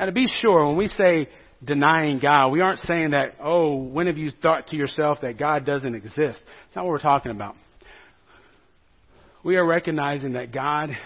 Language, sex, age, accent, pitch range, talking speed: English, male, 40-59, American, 135-175 Hz, 190 wpm